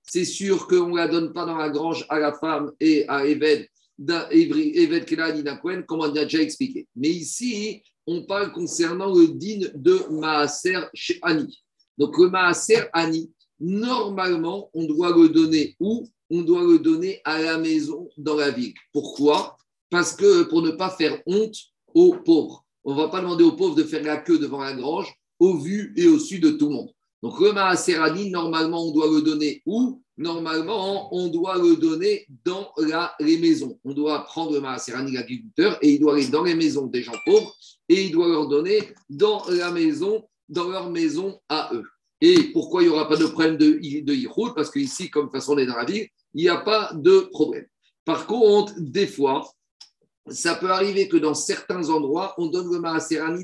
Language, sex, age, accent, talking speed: French, male, 50-69, French, 190 wpm